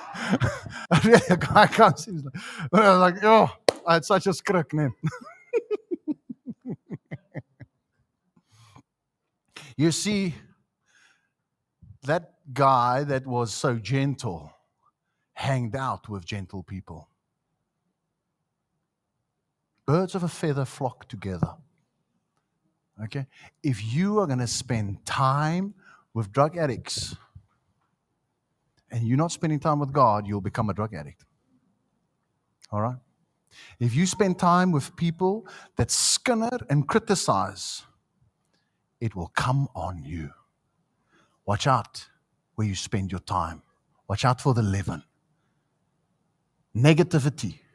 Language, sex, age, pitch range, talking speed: English, male, 50-69, 115-170 Hz, 105 wpm